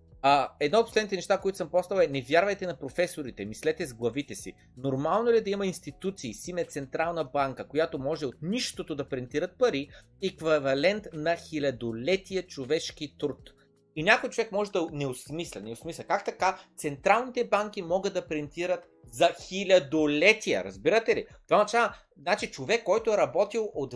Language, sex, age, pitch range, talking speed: Bulgarian, male, 30-49, 140-200 Hz, 160 wpm